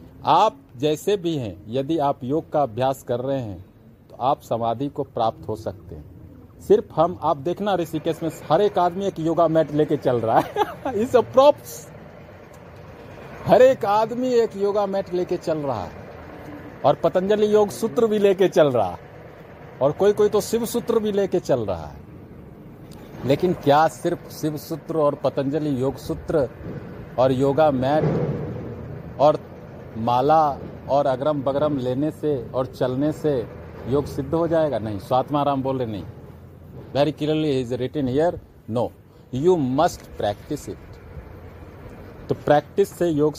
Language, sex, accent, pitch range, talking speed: Hindi, male, native, 120-160 Hz, 150 wpm